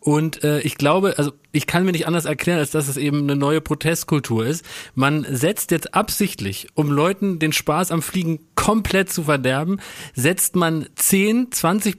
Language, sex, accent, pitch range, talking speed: German, male, German, 145-180 Hz, 180 wpm